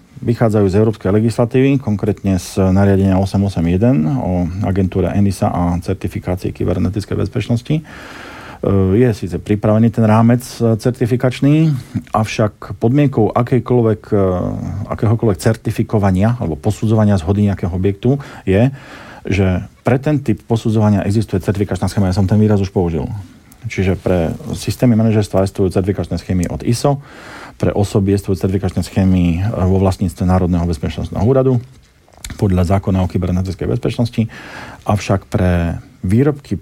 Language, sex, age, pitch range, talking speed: Slovak, male, 40-59, 95-115 Hz, 115 wpm